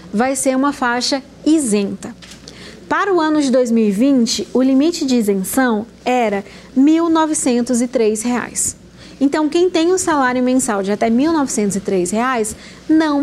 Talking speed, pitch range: 125 wpm, 225-295 Hz